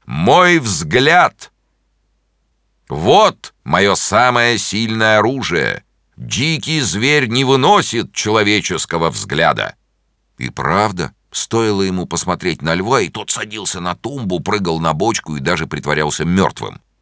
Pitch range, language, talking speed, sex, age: 80-130 Hz, Russian, 115 wpm, male, 50-69